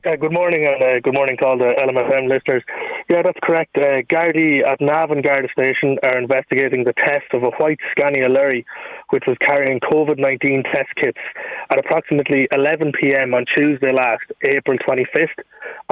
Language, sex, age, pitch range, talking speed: English, male, 20-39, 130-155 Hz, 170 wpm